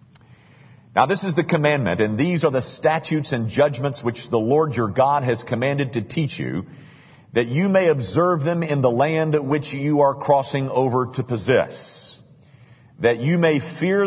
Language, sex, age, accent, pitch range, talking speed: English, male, 50-69, American, 120-160 Hz, 175 wpm